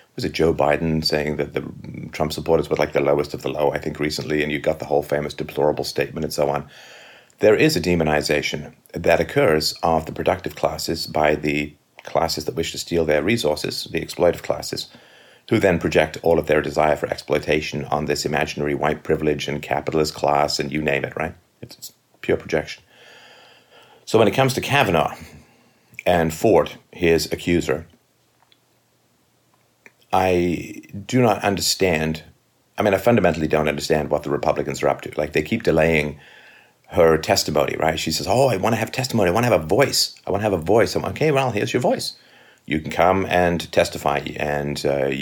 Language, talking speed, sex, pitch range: English, 190 wpm, male, 75-90 Hz